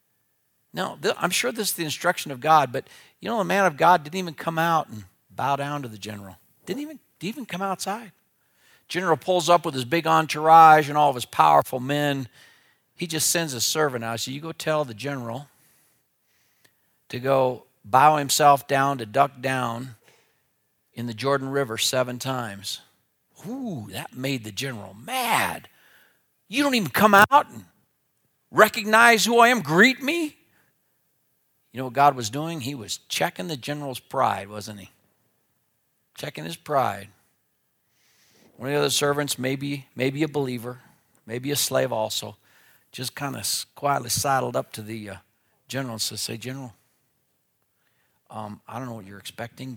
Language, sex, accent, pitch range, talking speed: English, male, American, 115-155 Hz, 170 wpm